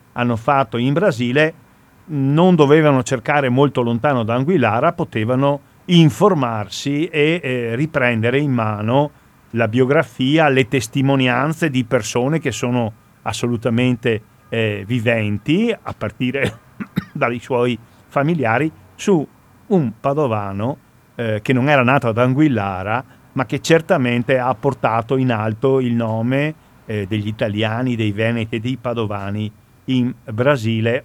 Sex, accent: male, native